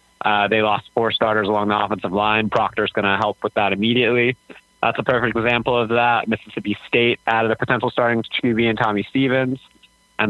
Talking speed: 190 wpm